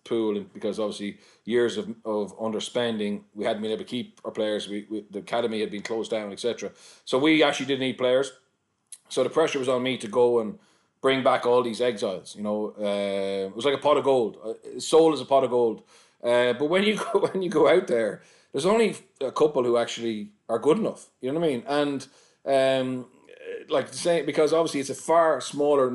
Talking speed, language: 220 wpm, English